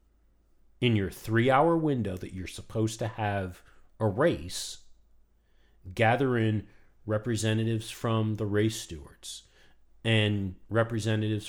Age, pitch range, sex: 40-59, 95-130 Hz, male